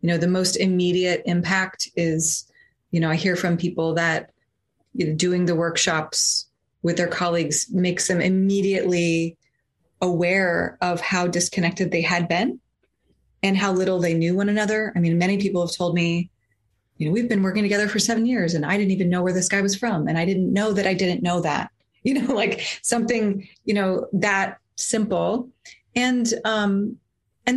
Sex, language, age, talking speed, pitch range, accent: female, English, 30-49, 185 wpm, 175-205 Hz, American